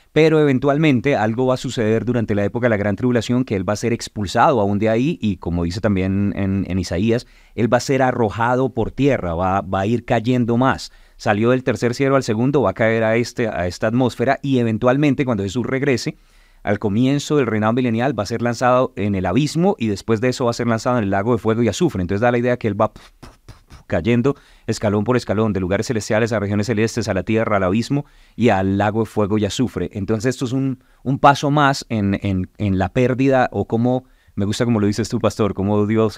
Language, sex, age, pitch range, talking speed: Spanish, male, 30-49, 100-125 Hz, 230 wpm